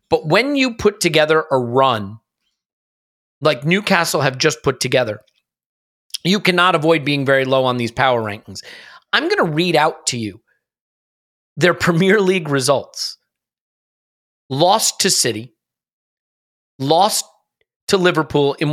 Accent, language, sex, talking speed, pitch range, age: American, English, male, 130 wpm, 120-170 Hz, 40-59